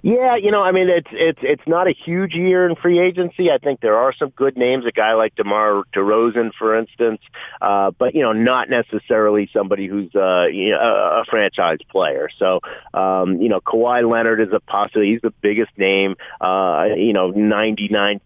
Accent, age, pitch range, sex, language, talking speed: American, 30-49, 100-135 Hz, male, English, 195 wpm